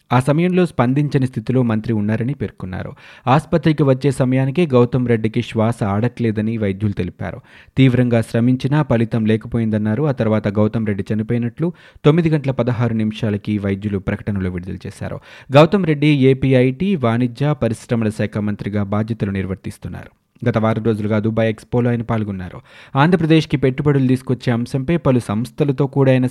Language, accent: Telugu, native